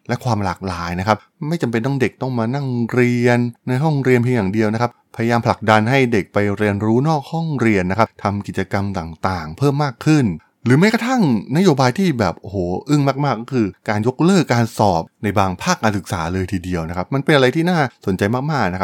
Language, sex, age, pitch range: Thai, male, 20-39, 100-130 Hz